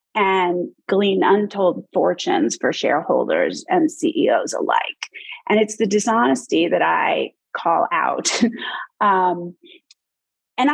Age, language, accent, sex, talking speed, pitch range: 30-49, English, American, female, 105 wpm, 180-265 Hz